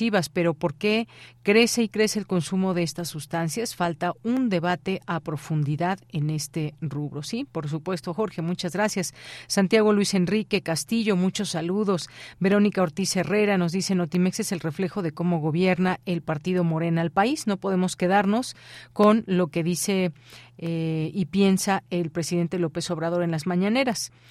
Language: Spanish